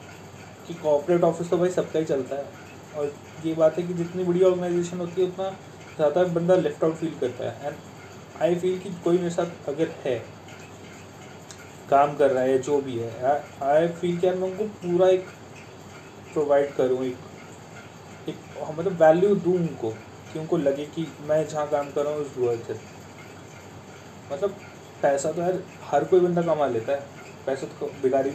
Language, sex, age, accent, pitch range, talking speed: Hindi, male, 30-49, native, 135-180 Hz, 175 wpm